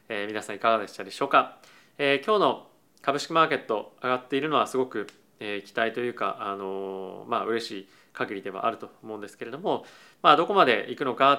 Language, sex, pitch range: Japanese, male, 110-140 Hz